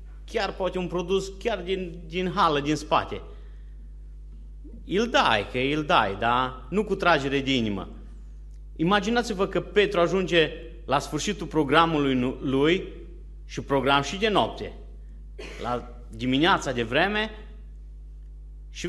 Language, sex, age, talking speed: Romanian, male, 30-49, 125 wpm